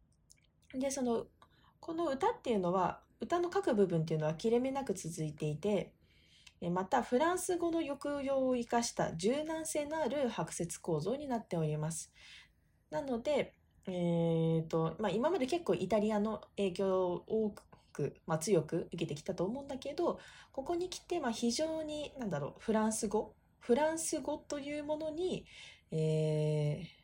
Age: 20-39